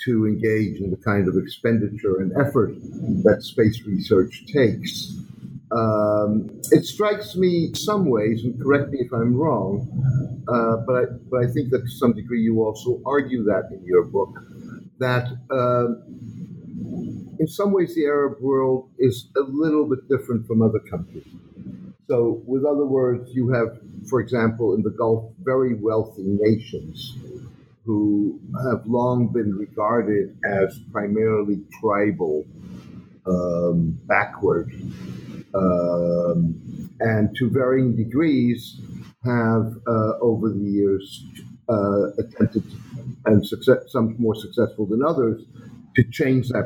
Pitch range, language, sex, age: 100-125 Hz, English, male, 50-69